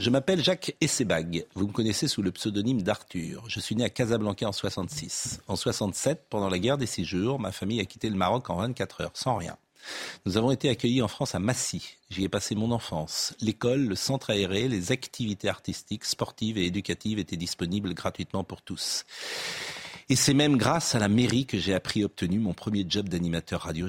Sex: male